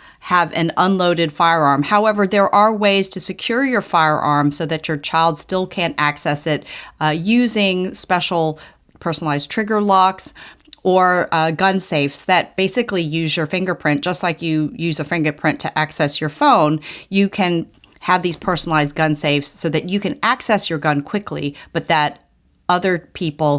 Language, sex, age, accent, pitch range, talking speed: English, female, 30-49, American, 155-200 Hz, 165 wpm